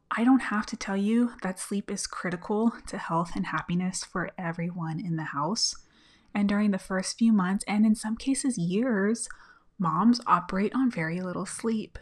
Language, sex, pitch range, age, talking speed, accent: English, female, 180-225 Hz, 20-39, 180 wpm, American